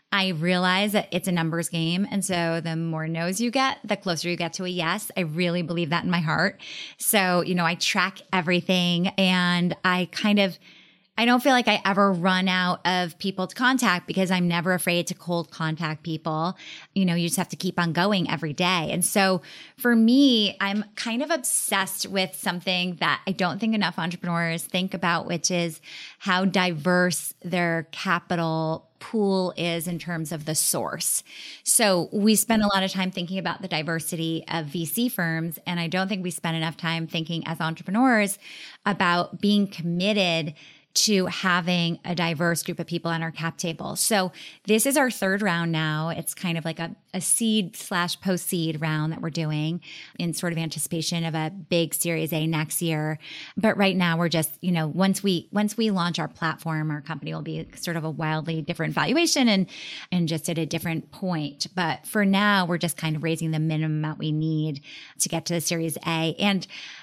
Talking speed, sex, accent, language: 200 wpm, female, American, English